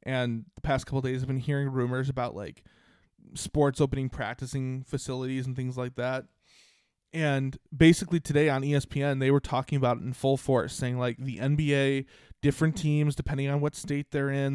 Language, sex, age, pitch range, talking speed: English, male, 20-39, 130-145 Hz, 185 wpm